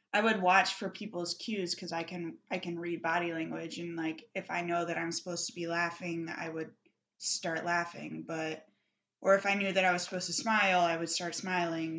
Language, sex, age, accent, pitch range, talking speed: English, female, 20-39, American, 170-195 Hz, 220 wpm